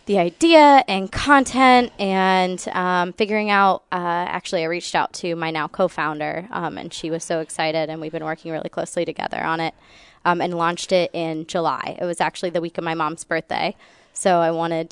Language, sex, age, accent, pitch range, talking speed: English, female, 20-39, American, 170-200 Hz, 200 wpm